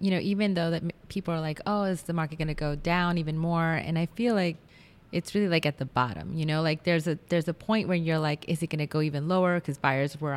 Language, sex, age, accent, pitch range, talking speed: English, female, 30-49, American, 150-185 Hz, 285 wpm